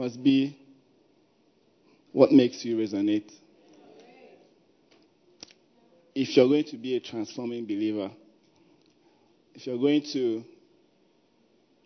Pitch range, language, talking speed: 115-155 Hz, English, 90 wpm